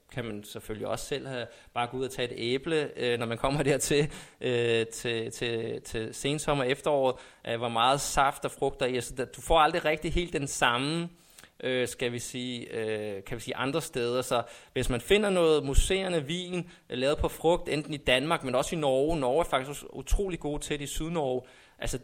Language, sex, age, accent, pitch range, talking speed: Danish, male, 20-39, native, 120-155 Hz, 195 wpm